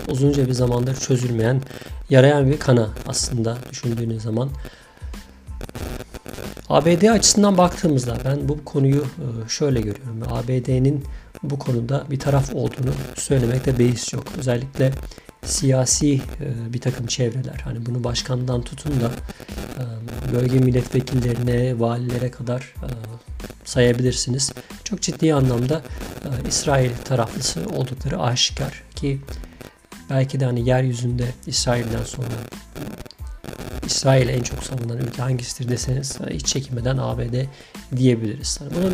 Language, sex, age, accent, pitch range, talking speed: Turkish, male, 50-69, native, 120-135 Hz, 105 wpm